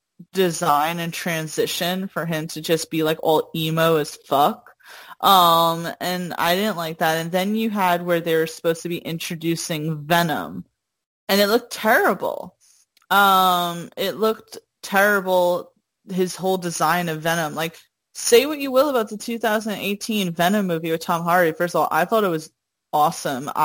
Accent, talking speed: American, 165 wpm